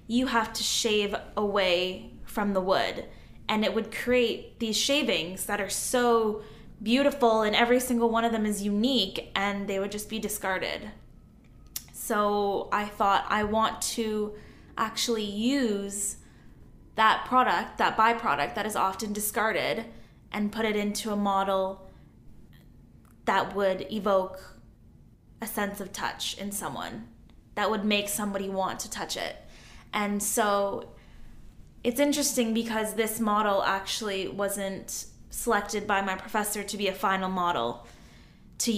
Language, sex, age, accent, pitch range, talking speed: English, female, 10-29, American, 200-235 Hz, 140 wpm